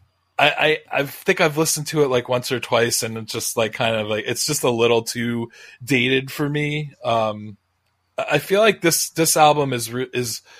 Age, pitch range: 20-39, 115-140 Hz